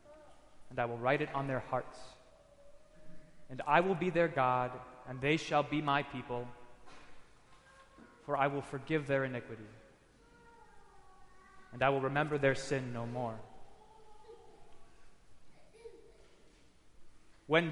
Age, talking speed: 20-39, 120 wpm